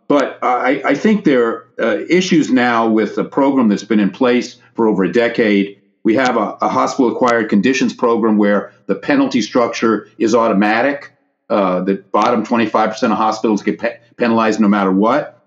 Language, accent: English, American